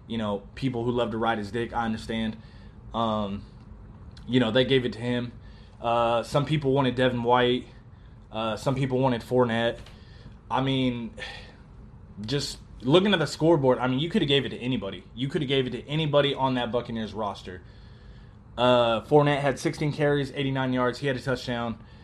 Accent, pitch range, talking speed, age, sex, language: American, 110-140 Hz, 185 wpm, 20-39, male, English